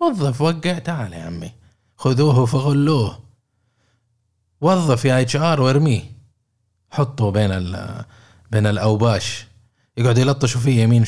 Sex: male